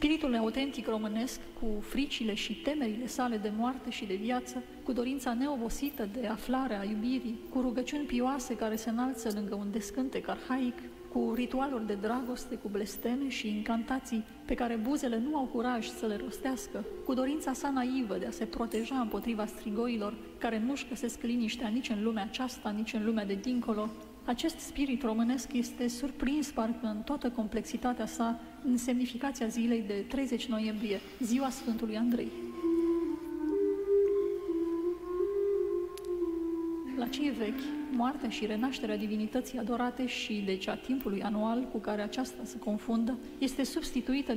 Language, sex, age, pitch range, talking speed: Romanian, female, 30-49, 225-265 Hz, 145 wpm